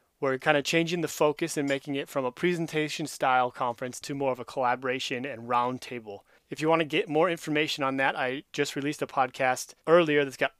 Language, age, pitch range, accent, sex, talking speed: English, 30-49, 130-155 Hz, American, male, 210 wpm